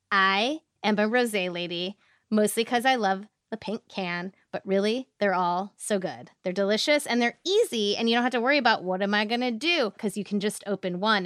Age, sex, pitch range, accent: 20-39, female, 195-245 Hz, American